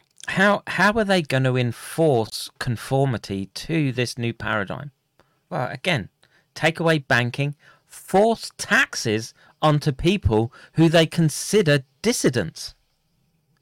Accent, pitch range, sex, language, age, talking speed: British, 120-160 Hz, male, English, 40-59, 110 wpm